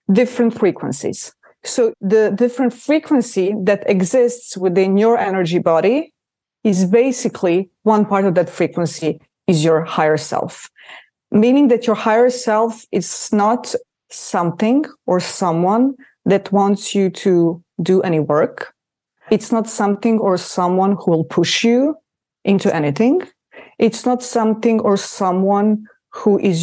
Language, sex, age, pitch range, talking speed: English, female, 30-49, 180-230 Hz, 130 wpm